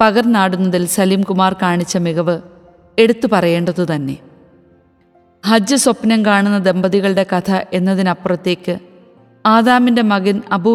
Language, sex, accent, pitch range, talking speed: Malayalam, female, native, 180-215 Hz, 90 wpm